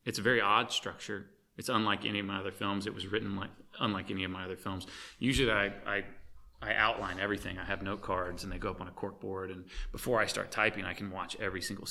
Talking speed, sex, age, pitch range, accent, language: 250 wpm, male, 30-49, 95-110 Hz, American, English